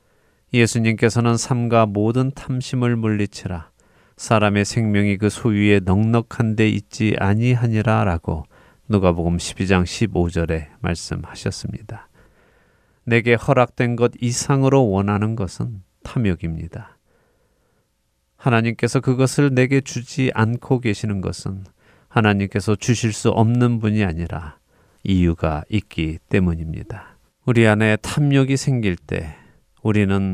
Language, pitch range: Korean, 95-120 Hz